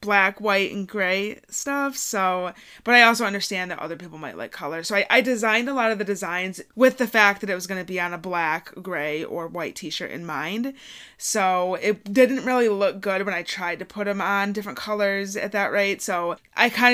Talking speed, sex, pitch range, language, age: 230 wpm, female, 175-210 Hz, English, 20-39